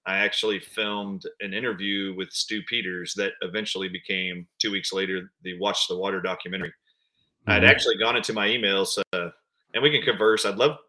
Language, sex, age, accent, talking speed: English, male, 30-49, American, 180 wpm